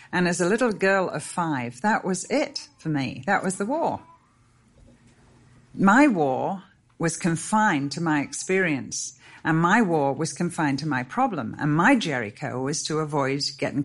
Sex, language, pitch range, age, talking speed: female, English, 130-180 Hz, 50-69, 165 wpm